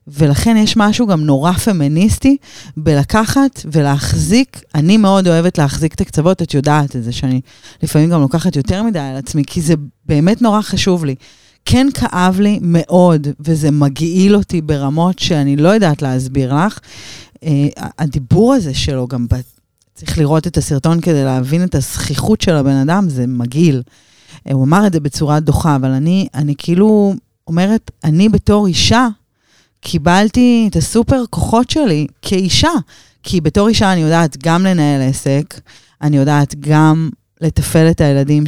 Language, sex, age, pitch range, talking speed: Hebrew, female, 30-49, 145-195 Hz, 150 wpm